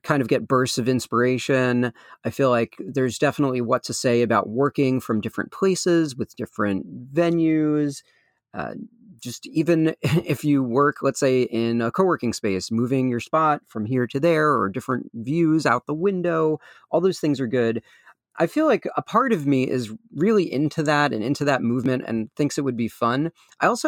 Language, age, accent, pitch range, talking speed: English, 40-59, American, 120-150 Hz, 190 wpm